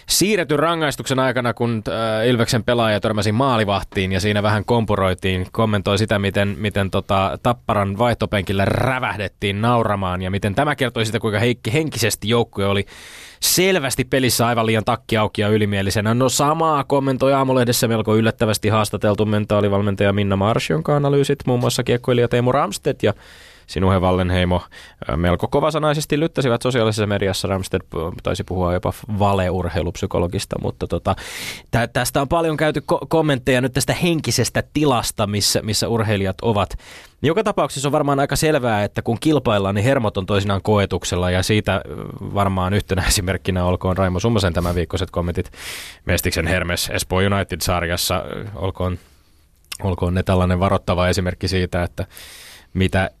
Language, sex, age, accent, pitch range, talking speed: Finnish, male, 20-39, native, 95-125 Hz, 140 wpm